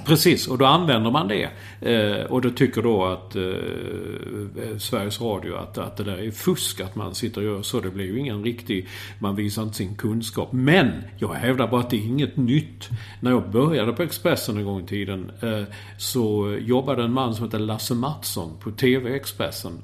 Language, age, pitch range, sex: English, 50-69, 105-125 Hz, male